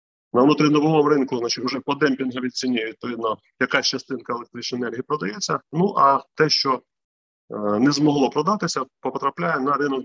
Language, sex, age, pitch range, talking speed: Ukrainian, male, 30-49, 120-155 Hz, 150 wpm